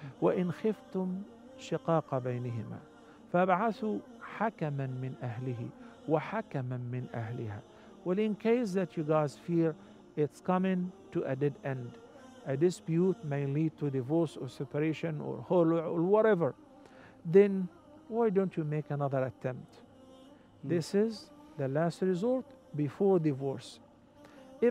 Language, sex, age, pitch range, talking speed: English, male, 50-69, 145-200 Hz, 100 wpm